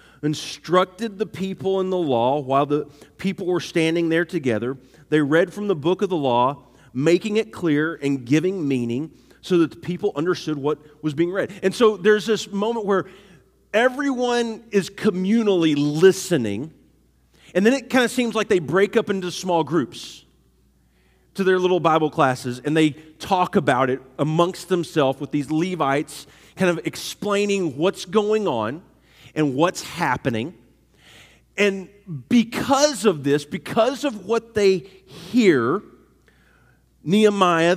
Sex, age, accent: male, 40-59, American